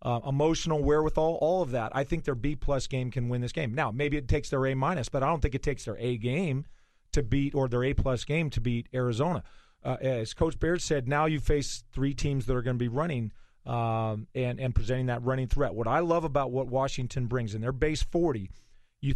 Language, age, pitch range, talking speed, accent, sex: English, 40-59, 125-155 Hz, 240 wpm, American, male